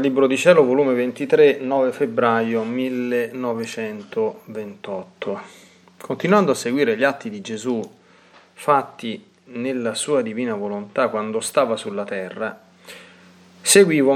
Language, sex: Italian, male